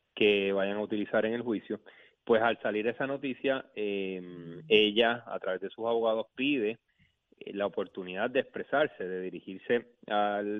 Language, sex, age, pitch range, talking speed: Spanish, male, 30-49, 100-115 Hz, 160 wpm